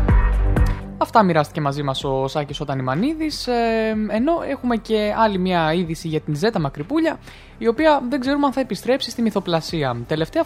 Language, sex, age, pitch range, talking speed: Greek, male, 20-39, 155-230 Hz, 170 wpm